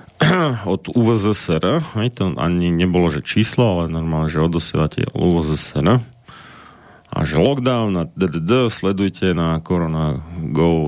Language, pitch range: Slovak, 90-105 Hz